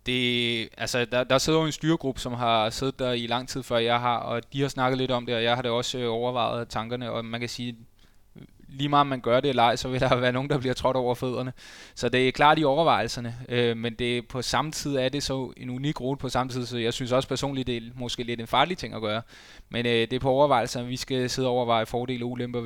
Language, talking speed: Danish, 270 wpm